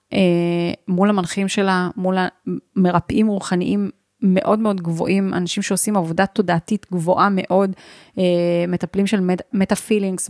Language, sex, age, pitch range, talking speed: Hebrew, female, 30-49, 180-210 Hz, 115 wpm